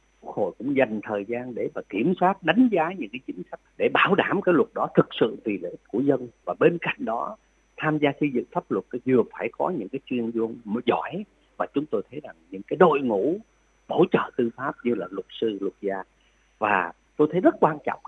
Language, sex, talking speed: Vietnamese, male, 240 wpm